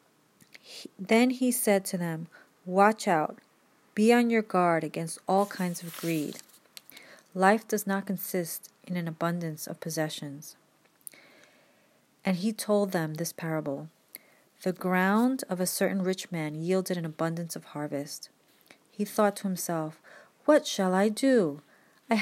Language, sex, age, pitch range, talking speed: English, female, 30-49, 170-215 Hz, 140 wpm